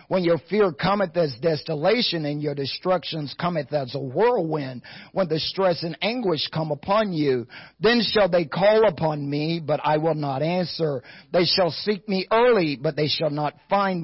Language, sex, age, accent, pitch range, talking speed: English, male, 50-69, American, 150-205 Hz, 180 wpm